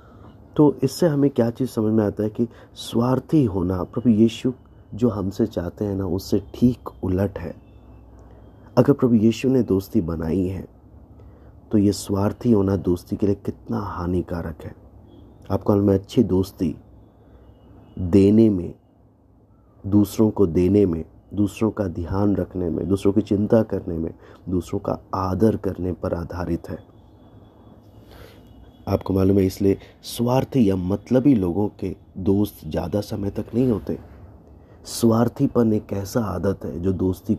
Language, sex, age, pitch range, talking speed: Hindi, male, 30-49, 90-110 Hz, 145 wpm